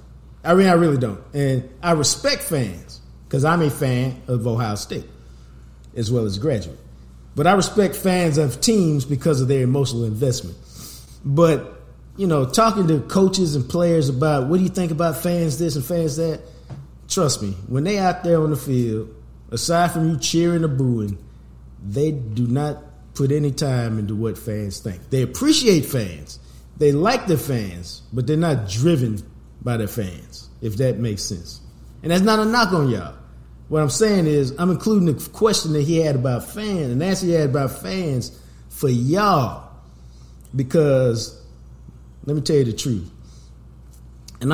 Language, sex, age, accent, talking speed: English, male, 50-69, American, 175 wpm